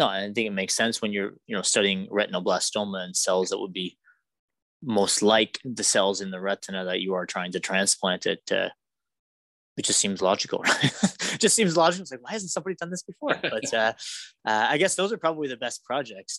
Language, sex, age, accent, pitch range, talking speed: English, male, 20-39, American, 100-155 Hz, 225 wpm